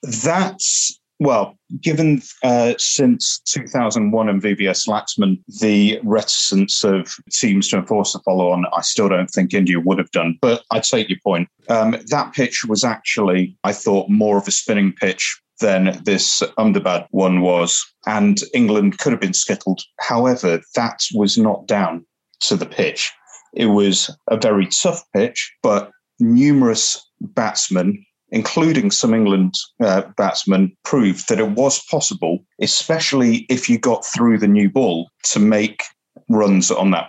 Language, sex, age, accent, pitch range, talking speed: English, male, 30-49, British, 95-155 Hz, 150 wpm